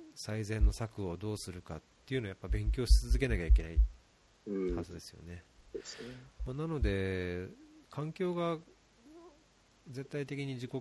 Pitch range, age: 90-130 Hz, 40-59